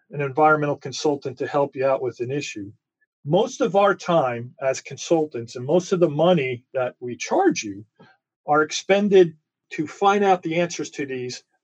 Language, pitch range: English, 145-185 Hz